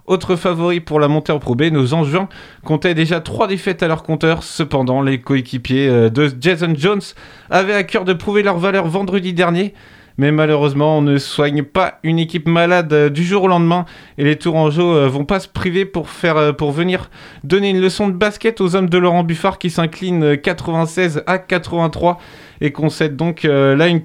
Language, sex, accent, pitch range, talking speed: French, male, French, 155-190 Hz, 190 wpm